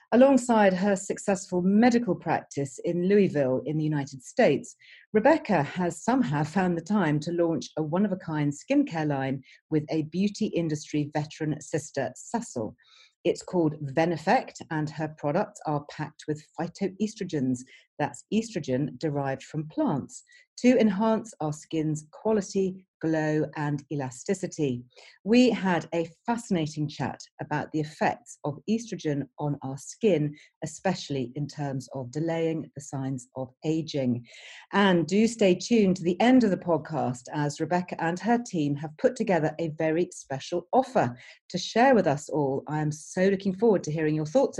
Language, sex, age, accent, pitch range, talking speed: English, female, 40-59, British, 150-200 Hz, 150 wpm